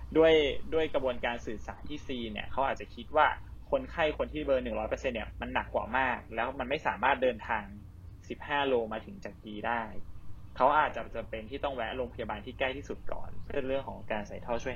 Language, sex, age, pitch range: Thai, male, 20-39, 100-135 Hz